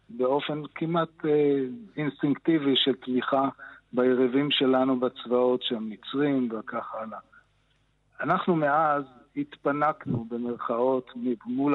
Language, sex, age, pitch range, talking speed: Hebrew, male, 50-69, 125-140 Hz, 95 wpm